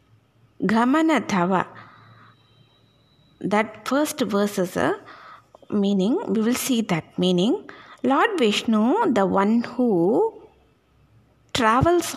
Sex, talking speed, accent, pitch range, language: female, 100 wpm, native, 180-260 Hz, Tamil